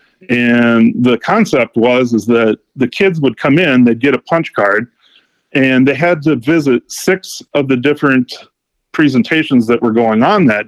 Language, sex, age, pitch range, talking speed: English, male, 40-59, 115-145 Hz, 175 wpm